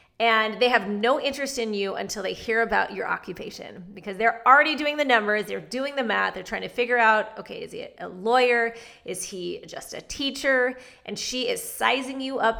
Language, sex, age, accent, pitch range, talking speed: English, female, 30-49, American, 215-265 Hz, 210 wpm